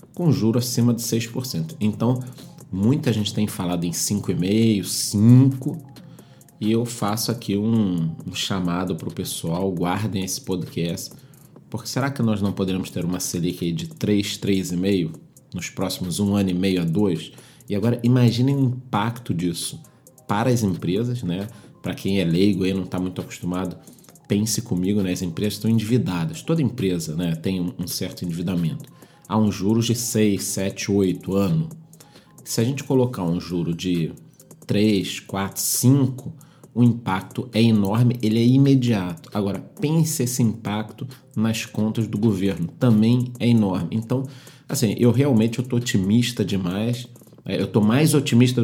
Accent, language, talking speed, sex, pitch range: Brazilian, Portuguese, 160 wpm, male, 95-125 Hz